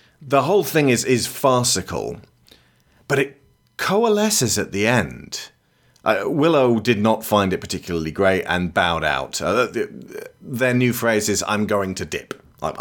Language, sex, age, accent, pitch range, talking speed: English, male, 30-49, British, 105-135 Hz, 155 wpm